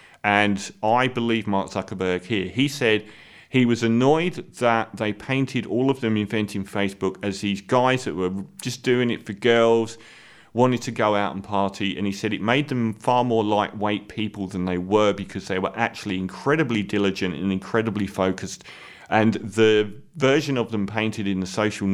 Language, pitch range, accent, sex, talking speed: English, 100-120 Hz, British, male, 180 wpm